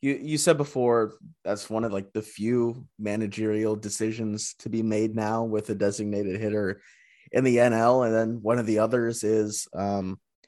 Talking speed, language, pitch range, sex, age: 180 wpm, English, 105-125 Hz, male, 20-39